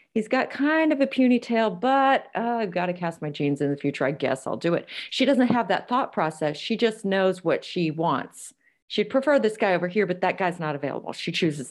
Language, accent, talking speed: English, American, 245 wpm